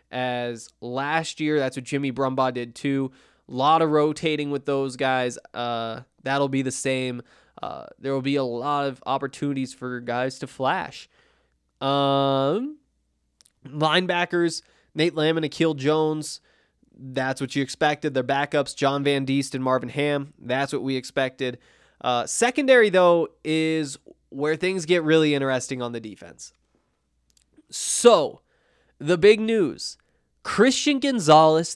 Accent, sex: American, male